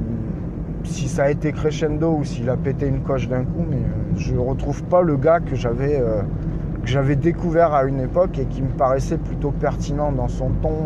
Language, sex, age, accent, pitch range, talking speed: French, male, 20-39, French, 130-155 Hz, 195 wpm